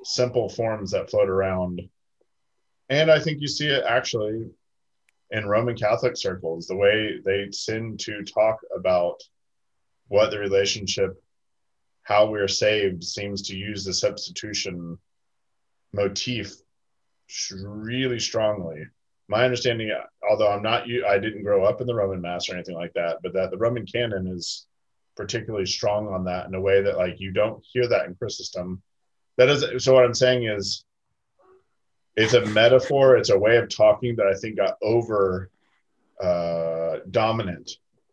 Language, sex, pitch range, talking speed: English, male, 95-125 Hz, 155 wpm